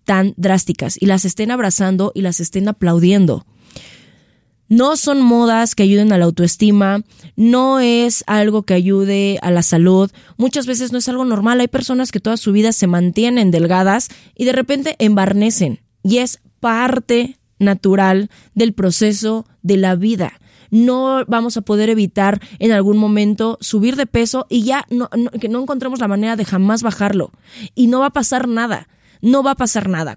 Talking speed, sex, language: 170 wpm, female, Spanish